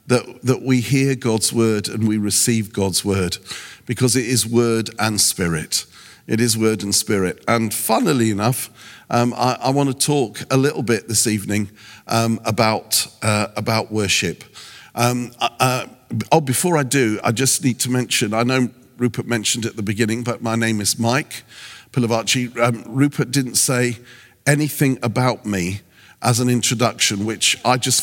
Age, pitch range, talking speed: 50-69, 110-130 Hz, 170 wpm